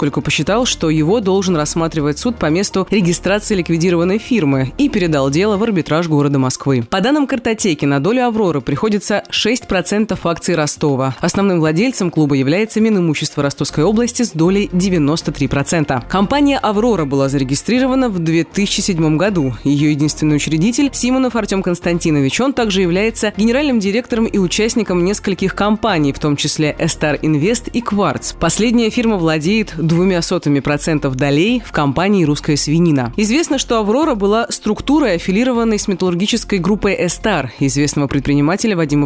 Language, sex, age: Russian, female, 20-39